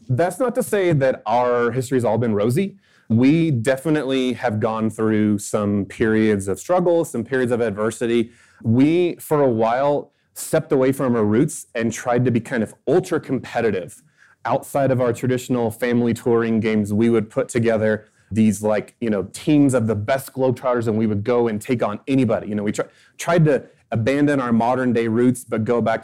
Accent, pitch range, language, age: American, 110-135 Hz, English, 30-49